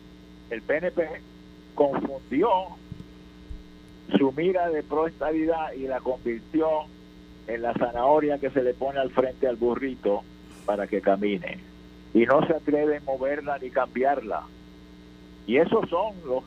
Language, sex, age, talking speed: Spanish, male, 50-69, 130 wpm